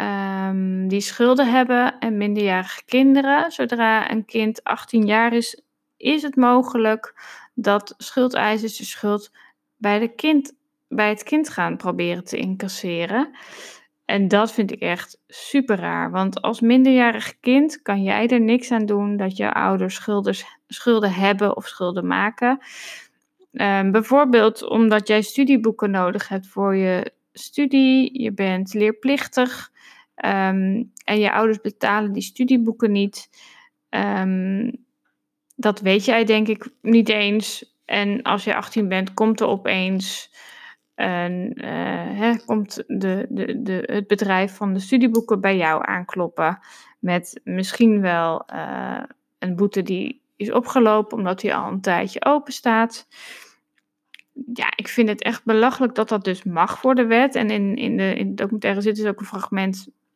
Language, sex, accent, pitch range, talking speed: Dutch, female, Dutch, 200-245 Hz, 135 wpm